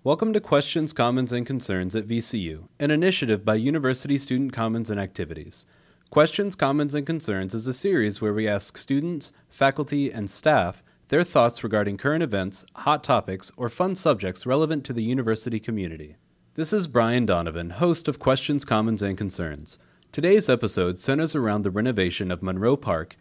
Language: English